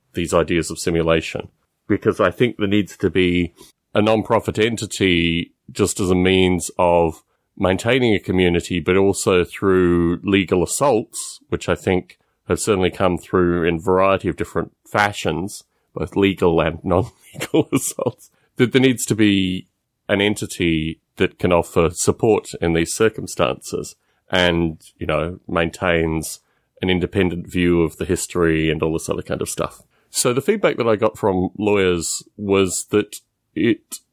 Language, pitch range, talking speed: English, 85-105 Hz, 155 wpm